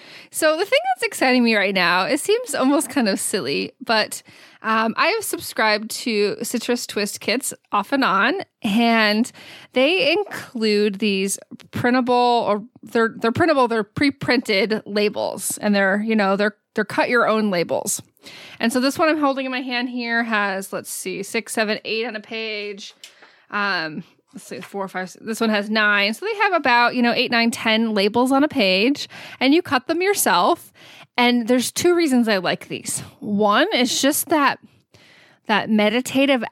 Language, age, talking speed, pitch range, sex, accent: English, 20-39, 175 wpm, 205-255 Hz, female, American